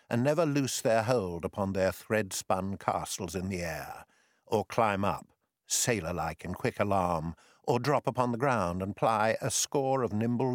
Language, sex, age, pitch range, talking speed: English, male, 60-79, 85-115 Hz, 170 wpm